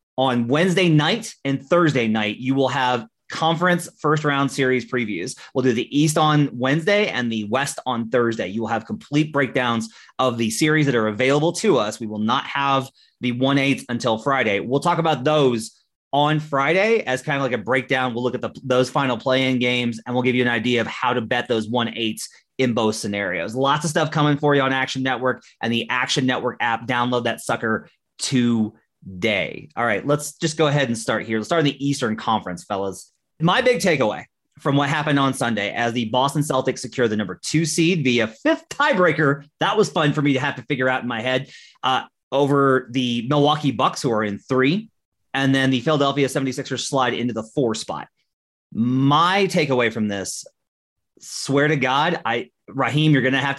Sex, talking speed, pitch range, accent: male, 205 wpm, 120-145 Hz, American